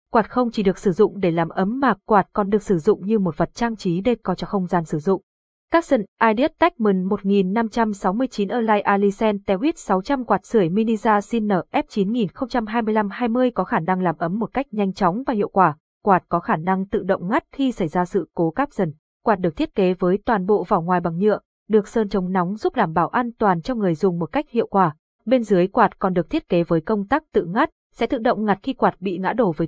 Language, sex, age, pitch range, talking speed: Vietnamese, female, 20-39, 185-235 Hz, 235 wpm